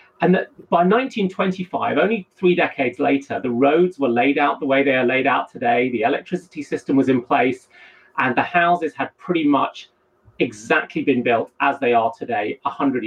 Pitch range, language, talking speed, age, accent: 125-170 Hz, English, 185 wpm, 30-49, British